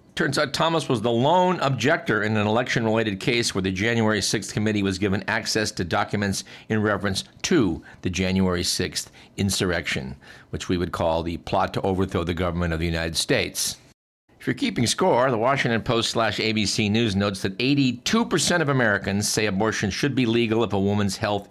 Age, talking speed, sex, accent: 50-69, 185 wpm, male, American